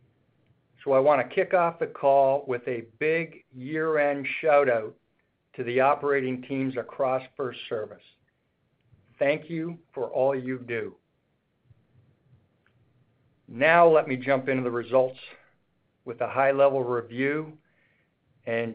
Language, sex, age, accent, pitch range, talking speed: English, male, 50-69, American, 125-145 Hz, 125 wpm